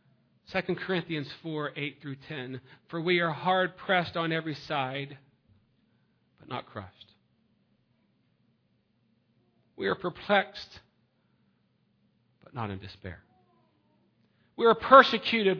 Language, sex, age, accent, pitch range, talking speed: English, male, 40-59, American, 140-215 Hz, 90 wpm